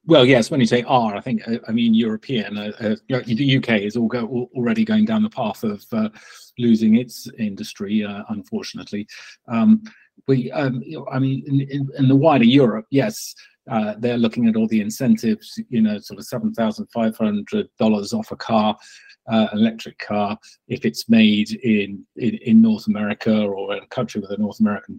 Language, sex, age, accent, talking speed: English, male, 40-59, British, 170 wpm